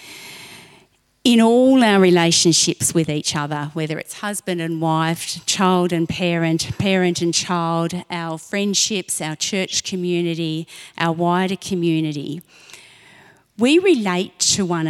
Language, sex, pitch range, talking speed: English, female, 160-185 Hz, 120 wpm